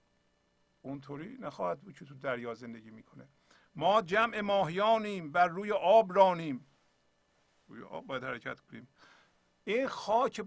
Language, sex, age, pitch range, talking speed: Persian, male, 50-69, 125-170 Hz, 125 wpm